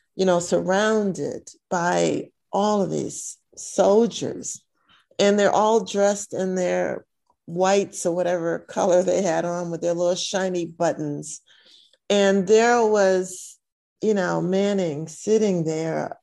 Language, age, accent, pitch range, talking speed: English, 50-69, American, 170-205 Hz, 125 wpm